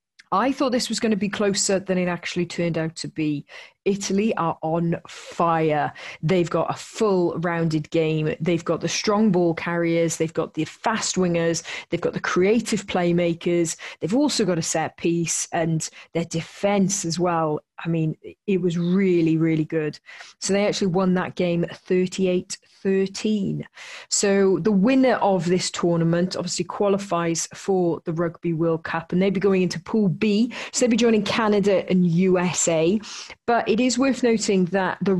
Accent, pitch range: British, 165-200 Hz